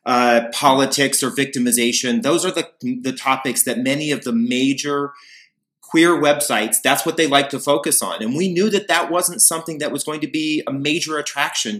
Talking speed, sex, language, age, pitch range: 195 wpm, male, English, 30-49, 125-170 Hz